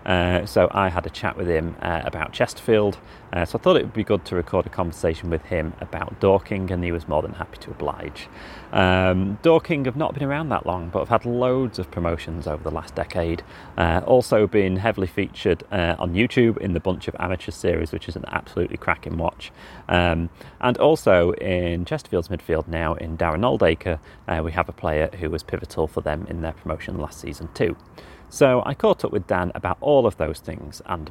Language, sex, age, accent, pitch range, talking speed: English, male, 30-49, British, 80-100 Hz, 215 wpm